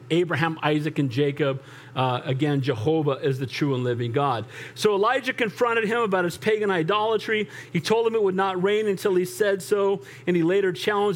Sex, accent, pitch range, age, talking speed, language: male, American, 135-230 Hz, 40-59, 195 wpm, English